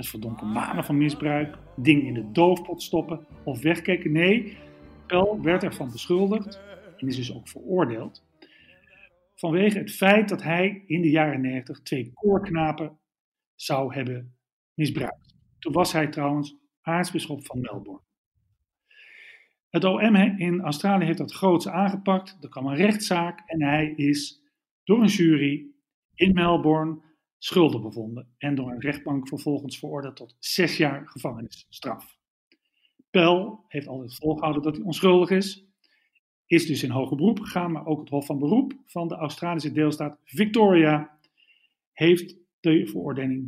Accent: Dutch